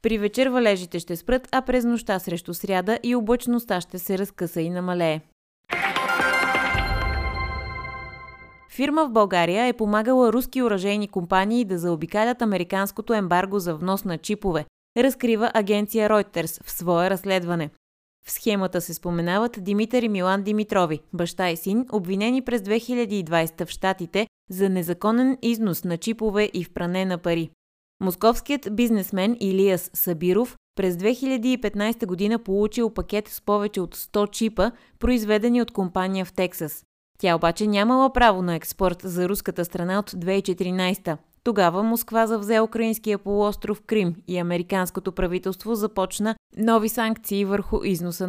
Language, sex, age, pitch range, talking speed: Bulgarian, female, 20-39, 180-220 Hz, 135 wpm